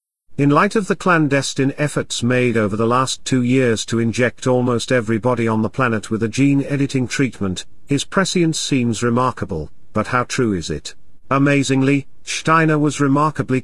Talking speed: 165 wpm